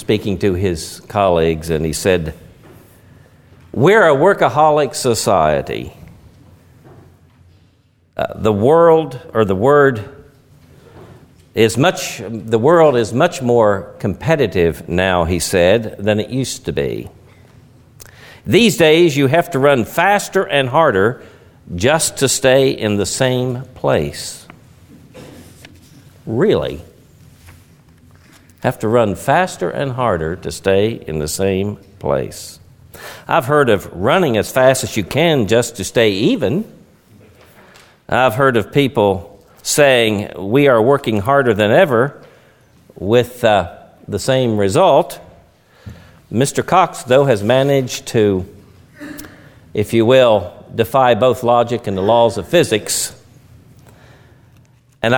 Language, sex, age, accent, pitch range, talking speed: English, male, 50-69, American, 100-135 Hz, 120 wpm